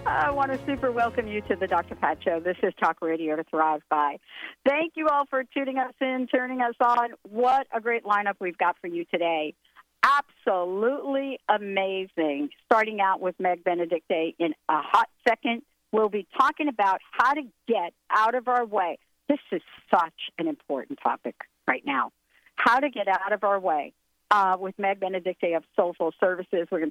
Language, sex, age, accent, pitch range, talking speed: English, female, 50-69, American, 180-255 Hz, 185 wpm